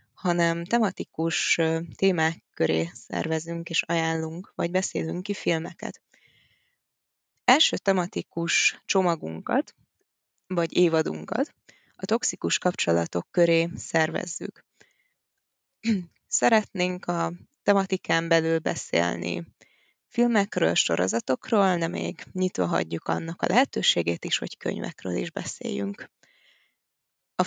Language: Hungarian